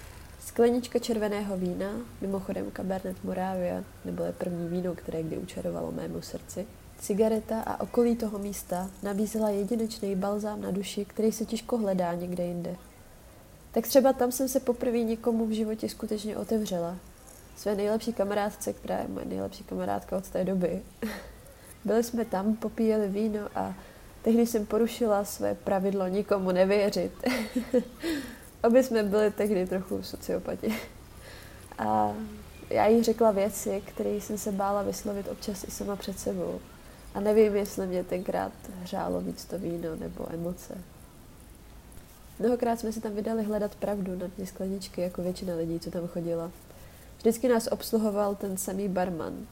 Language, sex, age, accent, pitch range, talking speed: Czech, female, 20-39, native, 180-225 Hz, 145 wpm